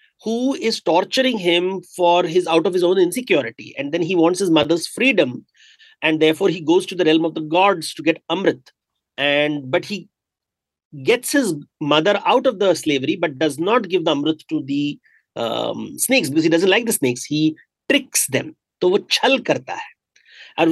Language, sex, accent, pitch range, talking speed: Hindi, male, native, 150-220 Hz, 195 wpm